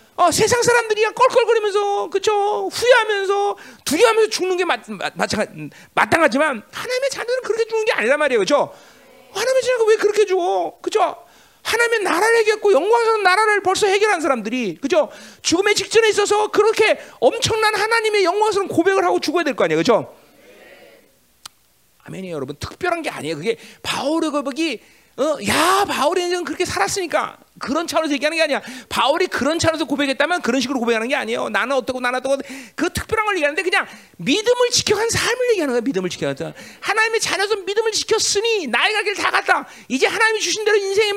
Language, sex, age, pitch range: Korean, male, 40-59, 290-435 Hz